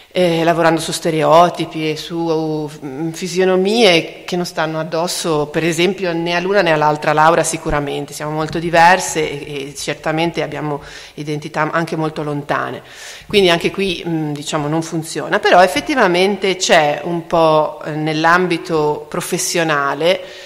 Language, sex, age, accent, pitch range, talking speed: Italian, female, 30-49, native, 155-185 Hz, 125 wpm